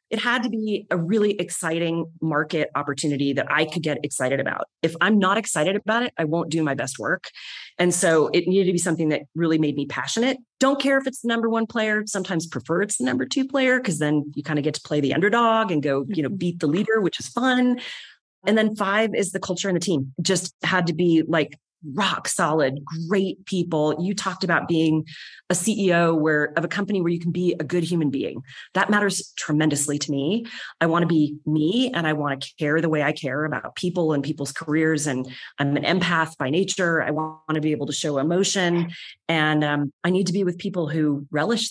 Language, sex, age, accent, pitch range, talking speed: English, female, 30-49, American, 155-195 Hz, 225 wpm